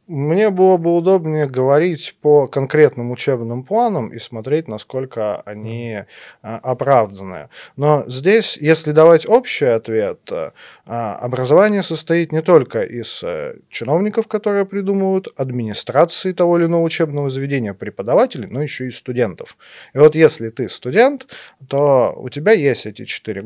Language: Russian